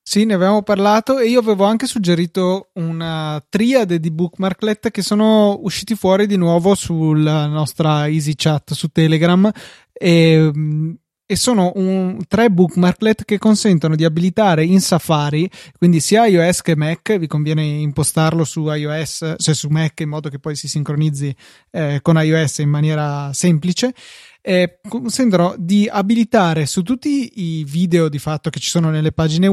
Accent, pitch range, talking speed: native, 155-195 Hz, 155 wpm